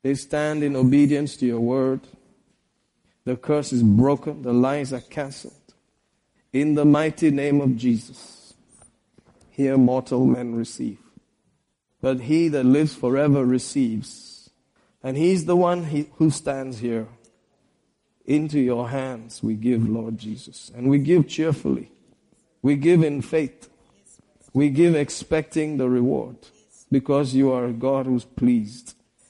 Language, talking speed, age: English, 135 wpm, 50-69